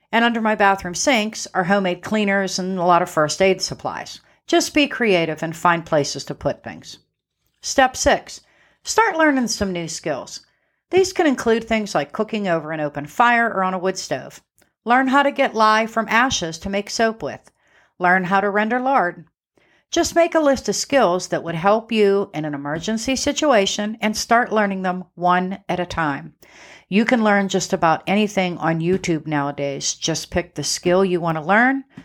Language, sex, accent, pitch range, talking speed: English, female, American, 175-230 Hz, 190 wpm